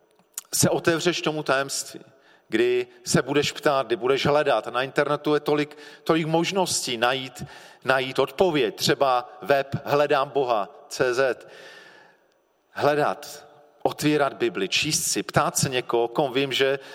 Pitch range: 120-155 Hz